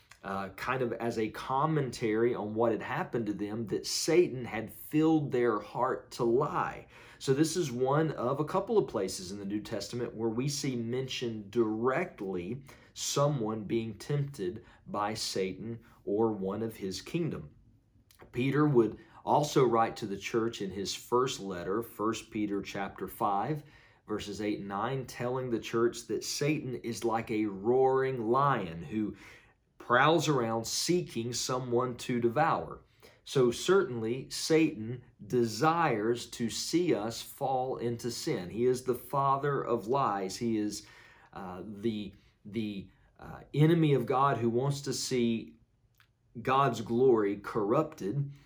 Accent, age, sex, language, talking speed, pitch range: American, 40-59, male, English, 145 wpm, 110-130 Hz